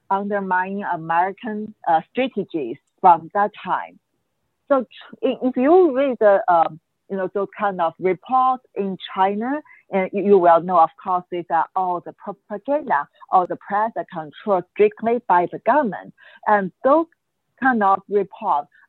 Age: 50-69